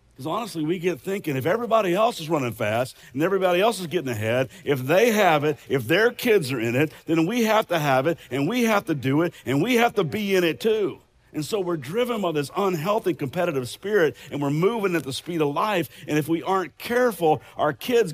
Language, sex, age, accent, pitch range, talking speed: English, male, 50-69, American, 130-180 Hz, 230 wpm